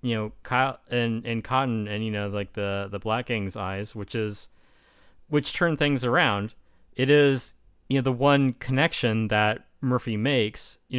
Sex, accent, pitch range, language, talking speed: male, American, 105-125 Hz, English, 170 wpm